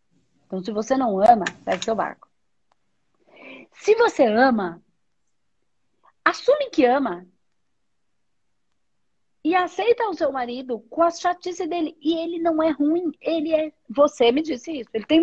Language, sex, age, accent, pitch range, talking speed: Portuguese, female, 40-59, Brazilian, 230-340 Hz, 140 wpm